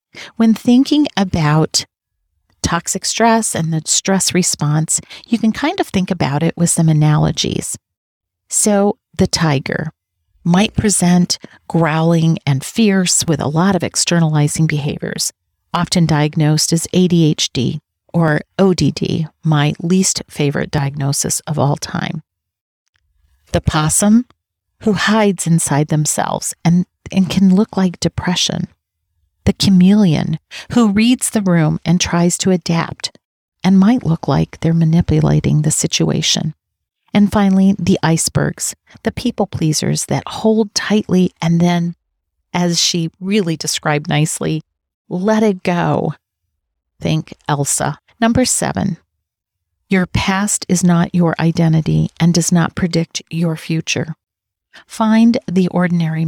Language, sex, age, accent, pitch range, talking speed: English, female, 40-59, American, 150-190 Hz, 120 wpm